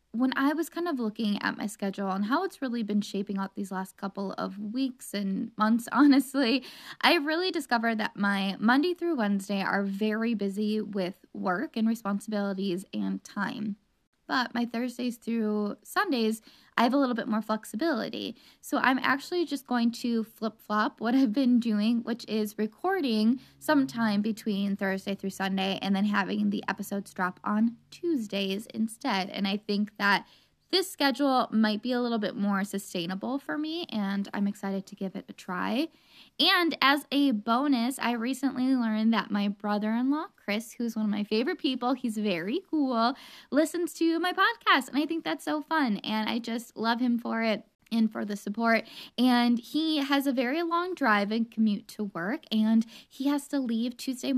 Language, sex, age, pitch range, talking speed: English, female, 10-29, 210-275 Hz, 180 wpm